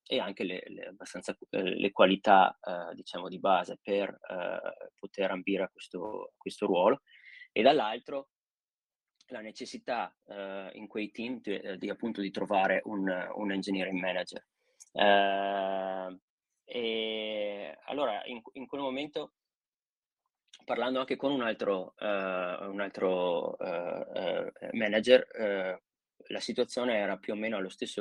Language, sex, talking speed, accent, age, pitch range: Italian, male, 135 wpm, native, 20-39, 95-115 Hz